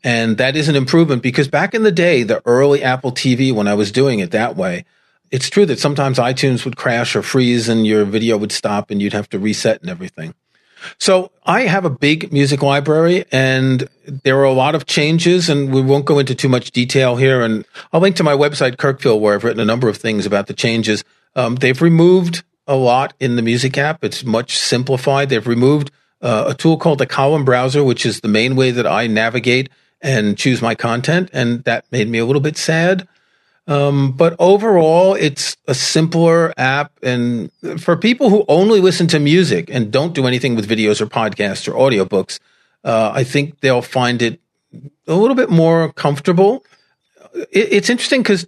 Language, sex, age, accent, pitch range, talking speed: English, male, 40-59, American, 120-165 Hz, 200 wpm